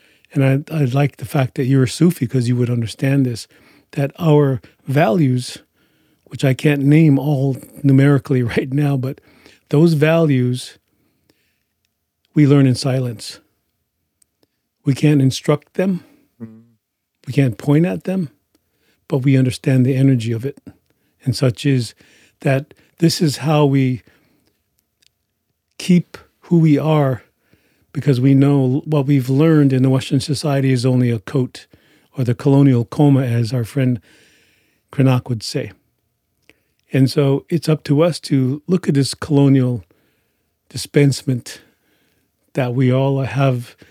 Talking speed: 140 wpm